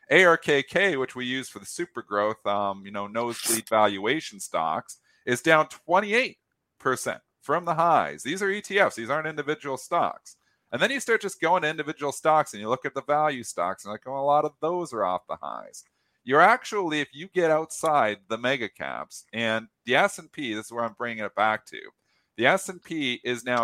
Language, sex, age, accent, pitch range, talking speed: English, male, 40-59, American, 110-160 Hz, 195 wpm